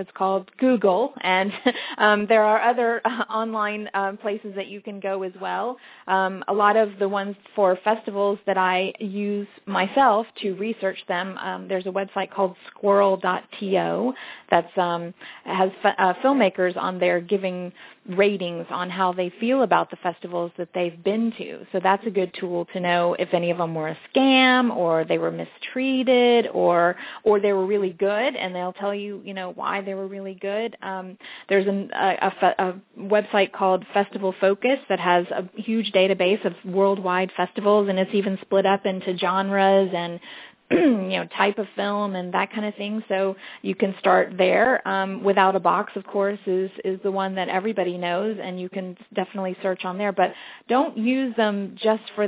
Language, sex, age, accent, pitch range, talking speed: English, female, 30-49, American, 185-215 Hz, 185 wpm